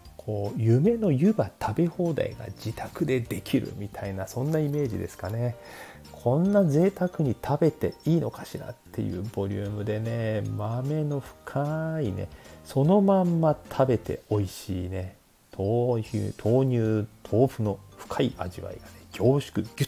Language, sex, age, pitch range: Japanese, male, 40-59, 100-140 Hz